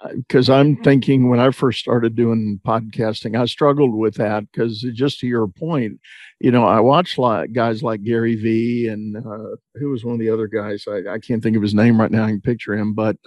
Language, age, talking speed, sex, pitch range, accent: English, 50-69, 235 wpm, male, 115-135 Hz, American